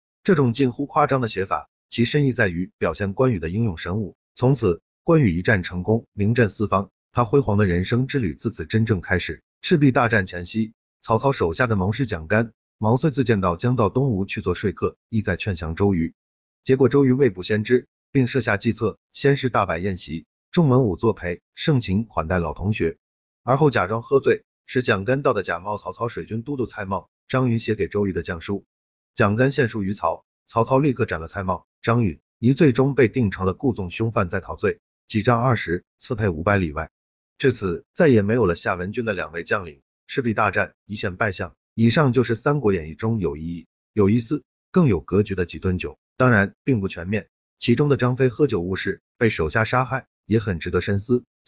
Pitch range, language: 95-125 Hz, Chinese